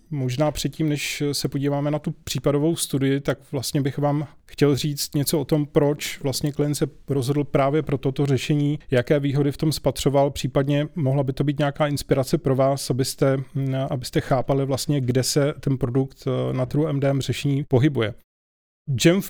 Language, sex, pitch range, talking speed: Czech, male, 135-150 Hz, 170 wpm